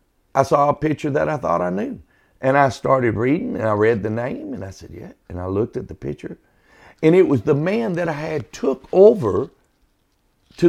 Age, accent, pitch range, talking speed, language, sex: 50-69, American, 120-195 Hz, 220 wpm, English, male